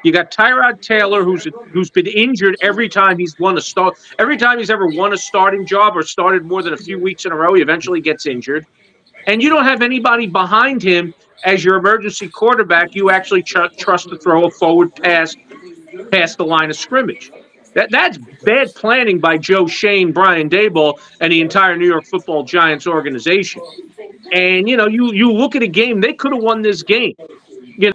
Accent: American